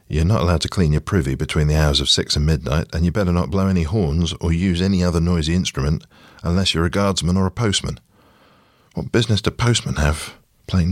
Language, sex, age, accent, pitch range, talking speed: English, male, 40-59, British, 70-95 Hz, 220 wpm